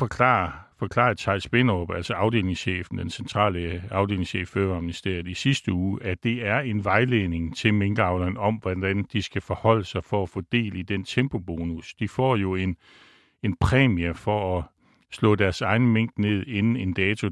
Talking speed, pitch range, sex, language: 170 wpm, 90-115 Hz, male, Danish